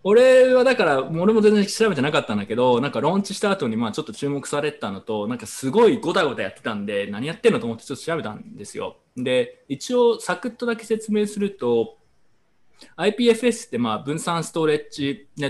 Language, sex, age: Japanese, male, 20-39